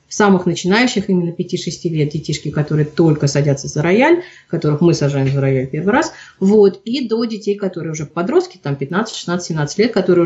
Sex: female